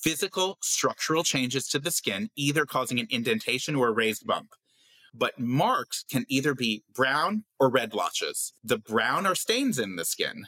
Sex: male